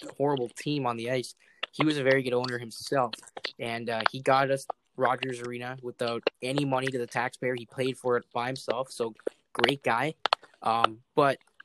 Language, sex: English, male